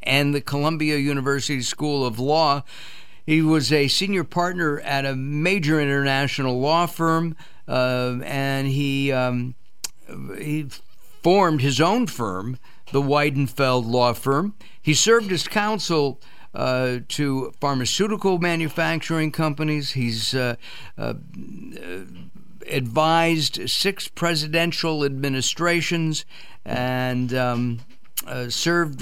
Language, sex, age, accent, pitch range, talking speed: English, male, 50-69, American, 125-160 Hz, 105 wpm